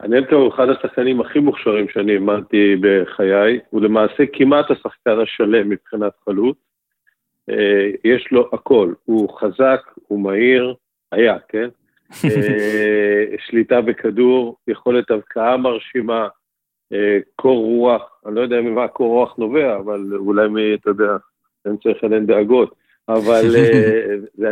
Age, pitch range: 50-69, 105-125 Hz